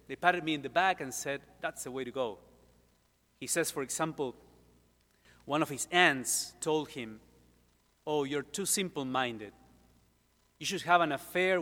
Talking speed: 165 wpm